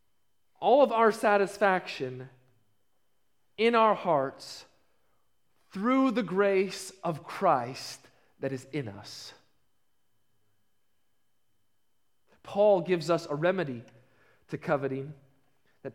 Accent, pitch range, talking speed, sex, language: American, 140-200 Hz, 90 wpm, male, English